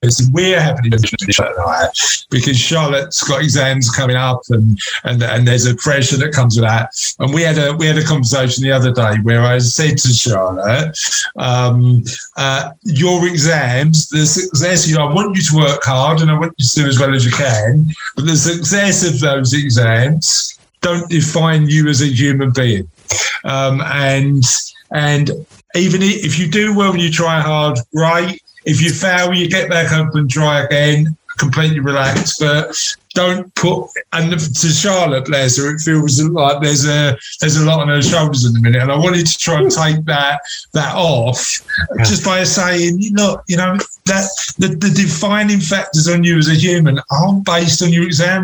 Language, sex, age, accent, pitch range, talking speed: English, male, 50-69, British, 135-170 Hz, 185 wpm